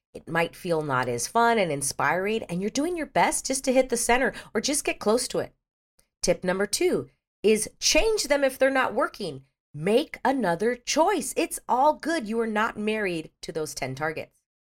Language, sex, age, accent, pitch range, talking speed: English, female, 40-59, American, 140-230 Hz, 195 wpm